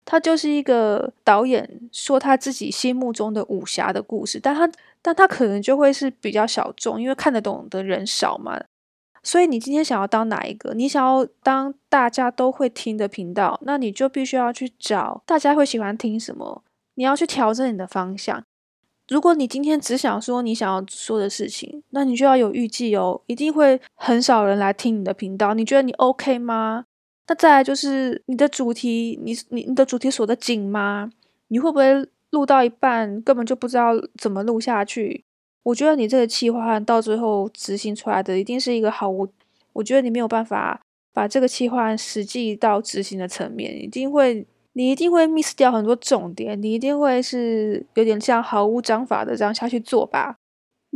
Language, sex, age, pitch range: Chinese, female, 20-39, 220-270 Hz